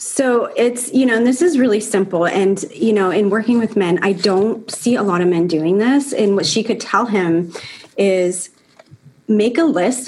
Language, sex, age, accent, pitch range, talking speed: English, female, 30-49, American, 190-245 Hz, 210 wpm